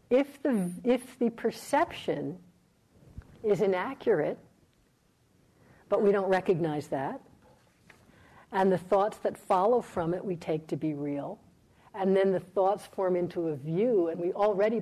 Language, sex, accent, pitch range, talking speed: English, female, American, 165-210 Hz, 140 wpm